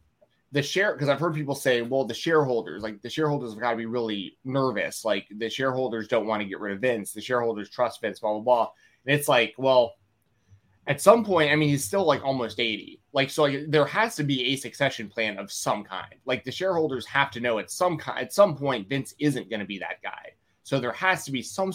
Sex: male